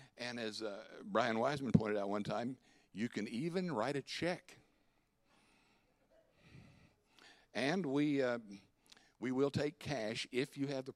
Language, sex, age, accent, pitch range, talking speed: English, male, 60-79, American, 90-135 Hz, 140 wpm